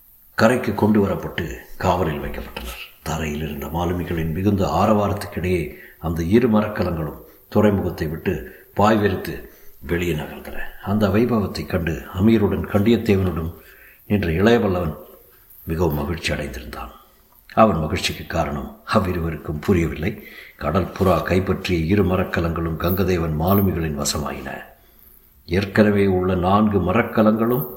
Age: 60-79